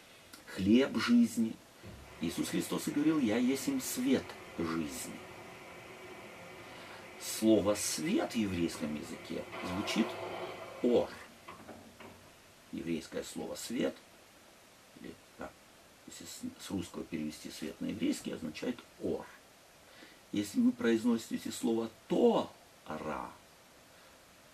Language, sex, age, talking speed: Russian, male, 50-69, 115 wpm